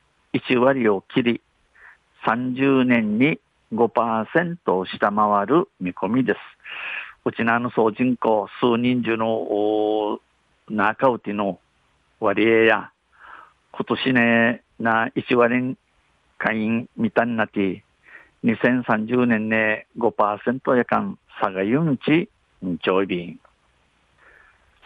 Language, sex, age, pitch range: Japanese, male, 50-69, 110-125 Hz